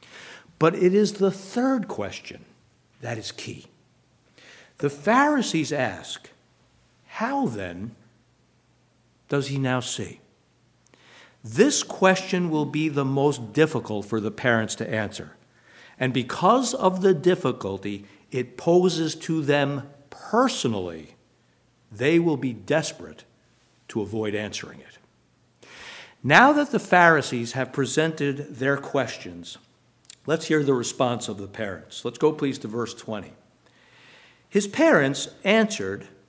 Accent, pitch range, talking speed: American, 115-175 Hz, 120 wpm